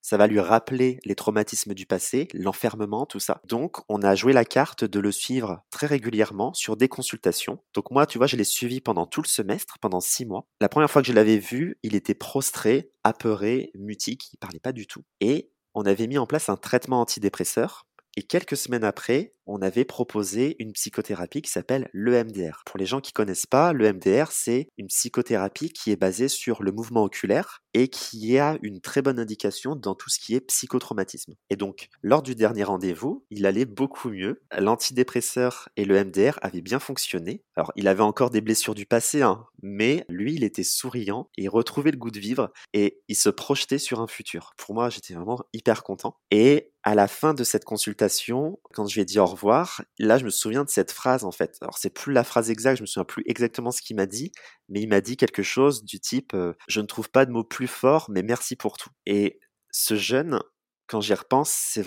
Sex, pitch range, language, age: male, 100-130 Hz, French, 20-39